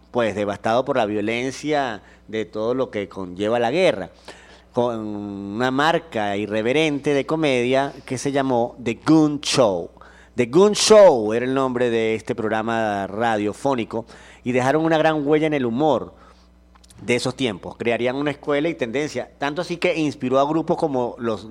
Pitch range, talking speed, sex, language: 105-135 Hz, 160 wpm, male, Spanish